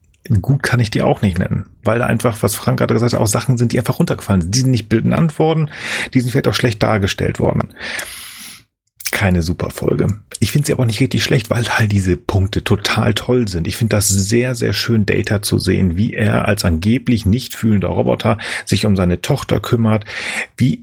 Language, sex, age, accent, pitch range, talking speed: German, male, 40-59, German, 95-125 Hz, 210 wpm